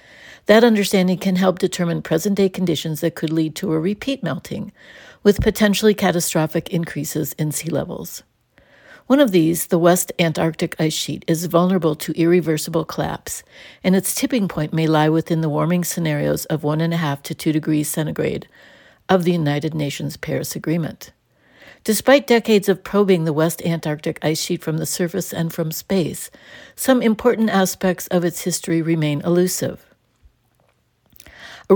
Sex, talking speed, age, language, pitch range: female, 150 wpm, 60-79, English, 160-190 Hz